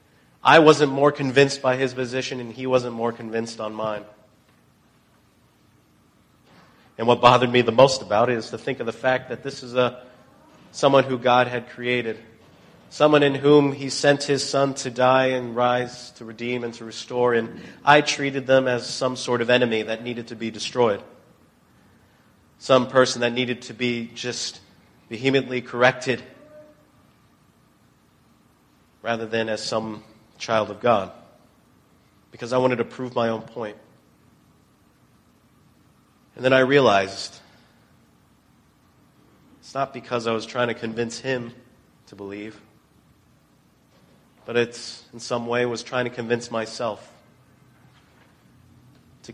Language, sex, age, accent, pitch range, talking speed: English, male, 40-59, American, 115-130 Hz, 140 wpm